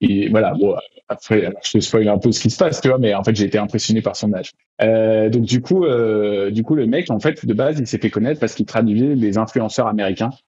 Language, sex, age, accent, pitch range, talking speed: French, male, 20-39, French, 100-120 Hz, 275 wpm